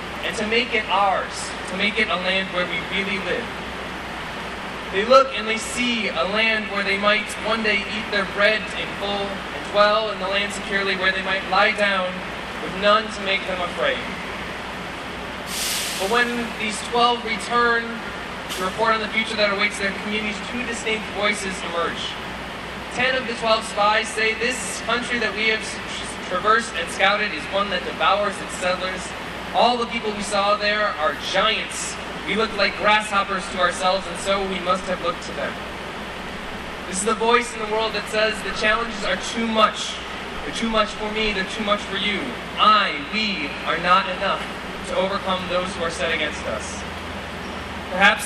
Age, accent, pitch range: 20-39, American, 190-220 Hz